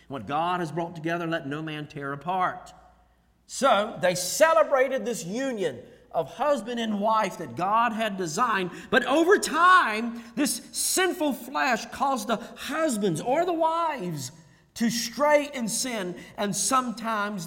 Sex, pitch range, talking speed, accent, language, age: male, 145-215 Hz, 140 wpm, American, English, 50-69